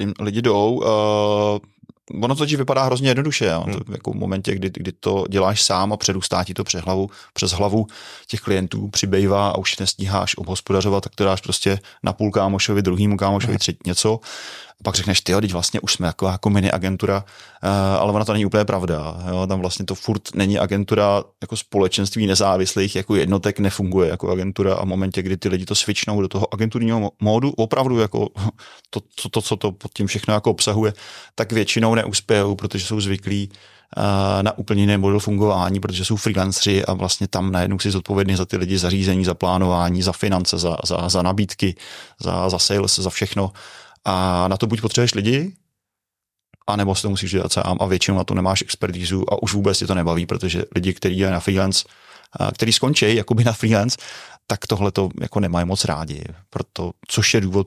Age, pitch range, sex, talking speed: 20-39, 95-105 Hz, male, 190 wpm